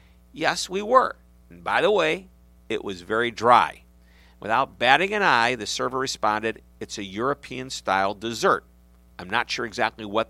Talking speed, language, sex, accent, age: 155 wpm, English, male, American, 50-69